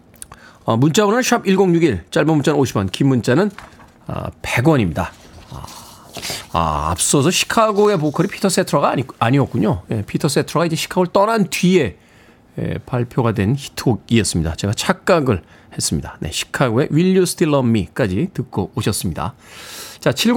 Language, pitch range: Korean, 130-180 Hz